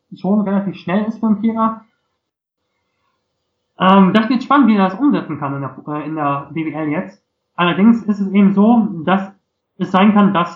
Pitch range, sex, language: 155-205 Hz, male, German